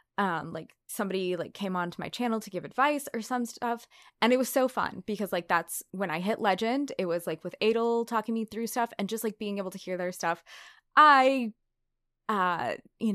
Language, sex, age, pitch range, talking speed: English, female, 20-39, 185-245 Hz, 215 wpm